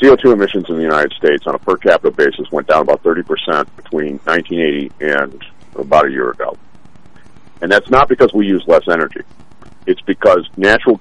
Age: 50-69